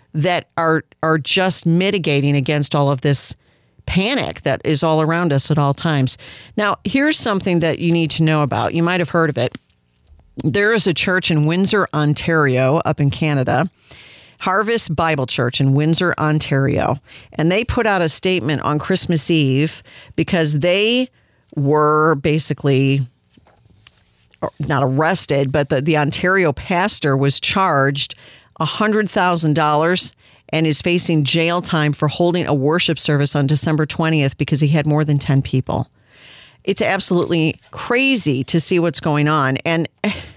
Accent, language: American, English